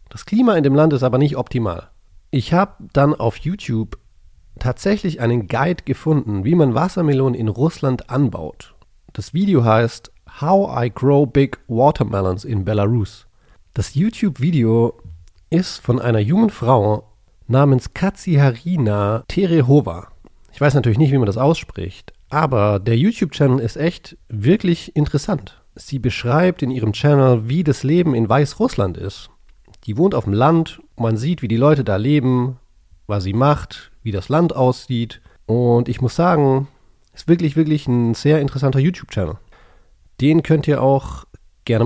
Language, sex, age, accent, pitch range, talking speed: English, male, 40-59, German, 110-150 Hz, 150 wpm